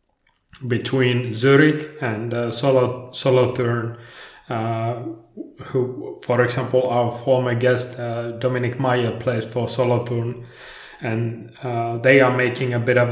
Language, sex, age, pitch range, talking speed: English, male, 20-39, 120-135 Hz, 135 wpm